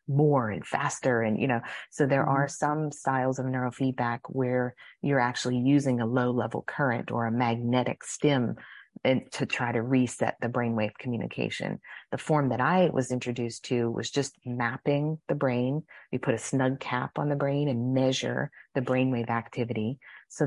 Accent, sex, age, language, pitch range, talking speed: American, female, 30-49, English, 120-135 Hz, 175 wpm